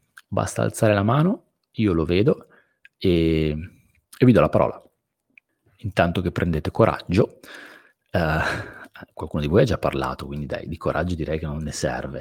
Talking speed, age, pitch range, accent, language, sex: 160 wpm, 30-49, 80-105 Hz, native, Italian, male